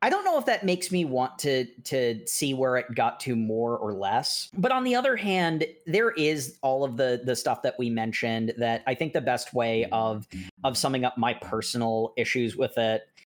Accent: American